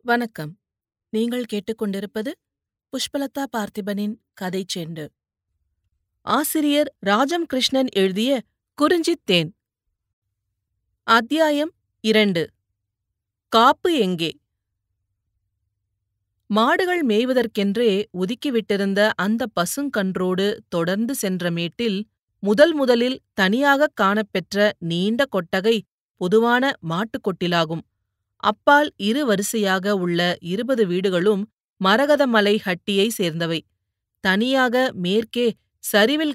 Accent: native